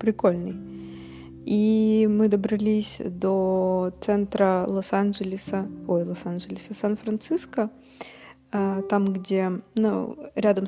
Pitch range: 185-220 Hz